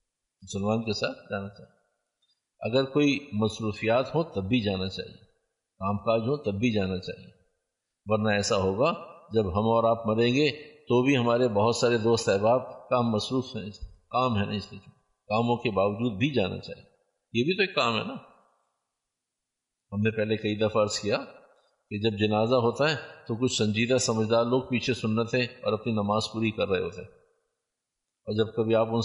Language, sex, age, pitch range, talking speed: Urdu, male, 50-69, 105-135 Hz, 185 wpm